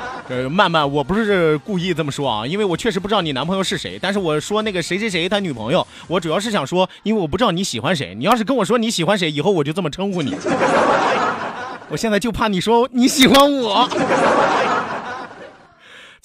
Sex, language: male, Chinese